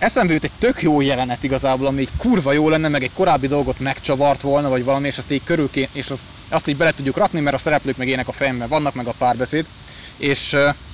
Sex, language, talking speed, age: male, Hungarian, 230 wpm, 20-39